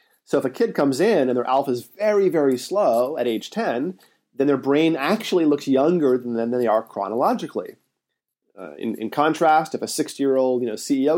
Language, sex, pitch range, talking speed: English, male, 110-155 Hz, 185 wpm